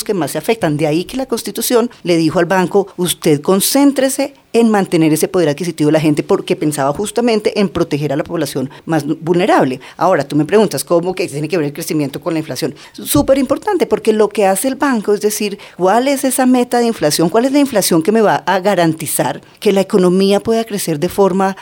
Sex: female